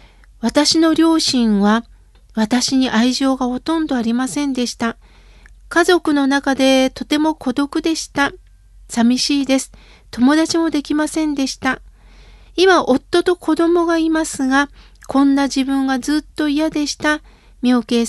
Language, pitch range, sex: Japanese, 260-320 Hz, female